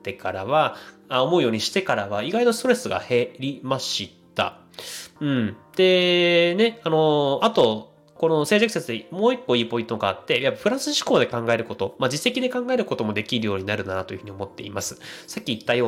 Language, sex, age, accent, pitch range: Japanese, male, 20-39, native, 110-165 Hz